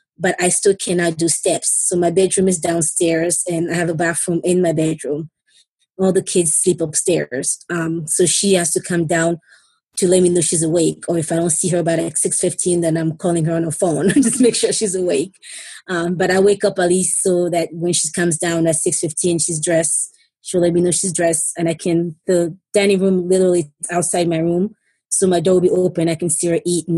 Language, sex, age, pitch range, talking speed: English, female, 20-39, 170-190 Hz, 230 wpm